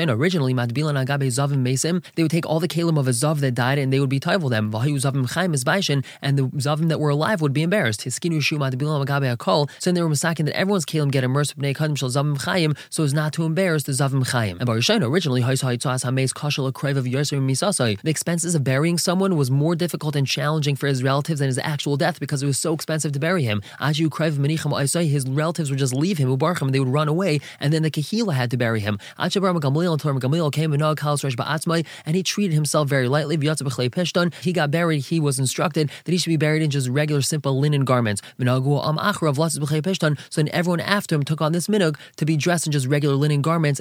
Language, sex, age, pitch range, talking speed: English, male, 20-39, 135-165 Hz, 225 wpm